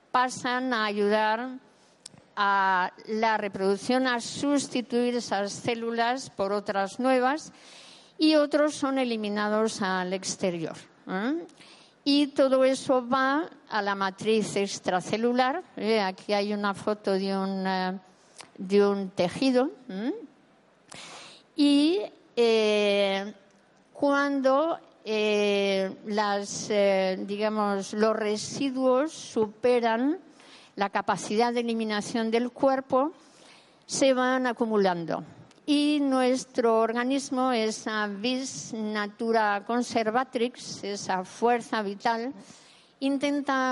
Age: 50-69